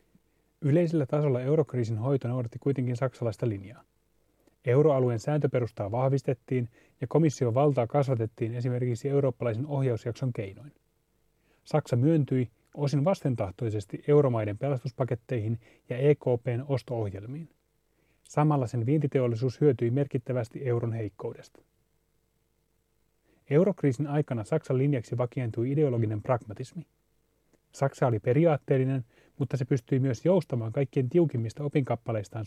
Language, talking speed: Finnish, 100 wpm